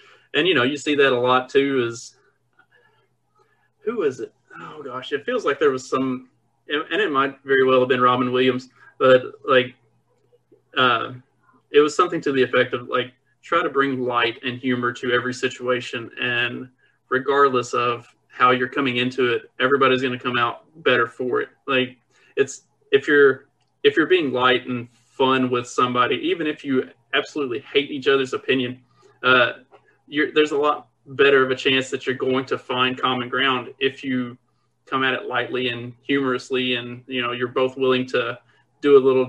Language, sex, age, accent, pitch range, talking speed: English, male, 30-49, American, 125-140 Hz, 185 wpm